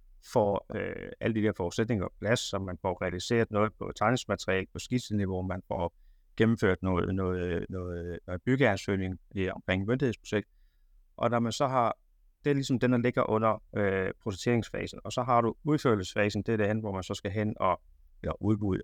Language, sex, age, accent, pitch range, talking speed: Danish, male, 30-49, native, 95-120 Hz, 185 wpm